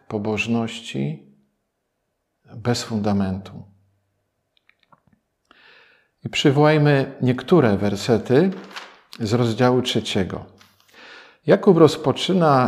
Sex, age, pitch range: male, 50-69, 100-140 Hz